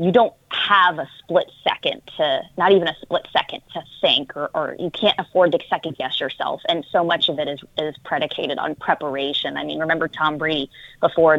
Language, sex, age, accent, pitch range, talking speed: English, female, 20-39, American, 140-170 Hz, 205 wpm